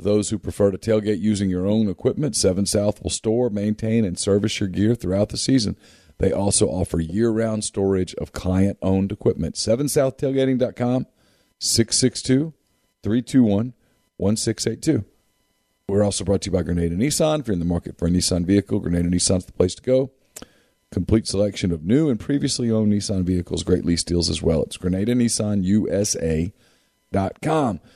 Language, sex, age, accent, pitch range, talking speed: English, male, 40-59, American, 95-120 Hz, 155 wpm